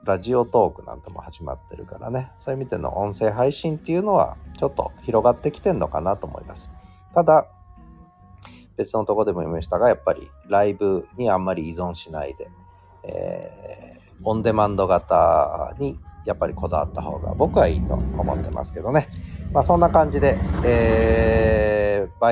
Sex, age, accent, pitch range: male, 40-59, native, 85-115 Hz